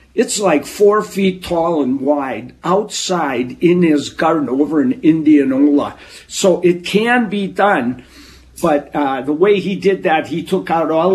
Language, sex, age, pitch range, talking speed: English, male, 60-79, 150-200 Hz, 160 wpm